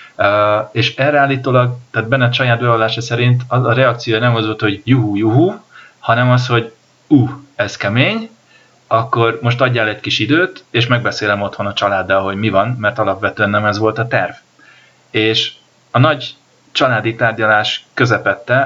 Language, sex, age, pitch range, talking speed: Hungarian, male, 30-49, 105-125 Hz, 165 wpm